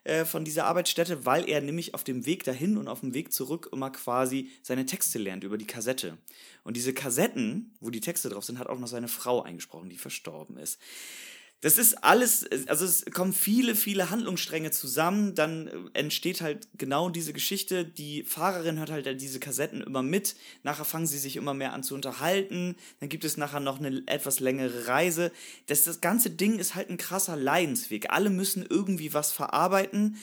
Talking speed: 190 wpm